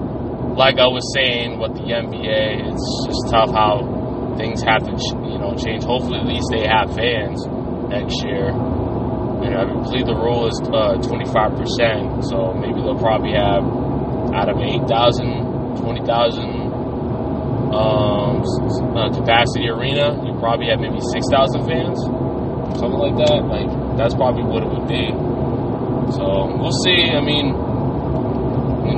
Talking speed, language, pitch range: 145 wpm, English, 120-130 Hz